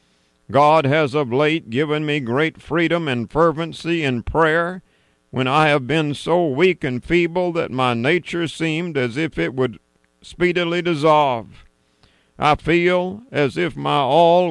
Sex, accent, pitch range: male, American, 130-165 Hz